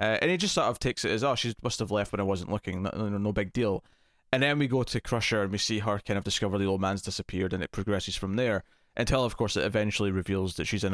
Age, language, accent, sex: 20-39, English, British, male